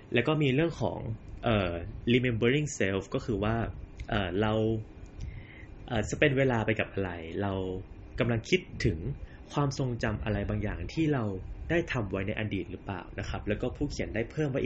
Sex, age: male, 20-39